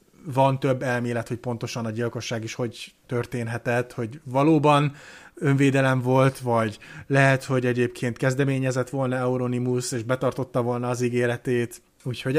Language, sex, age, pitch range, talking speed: Hungarian, male, 30-49, 115-135 Hz, 130 wpm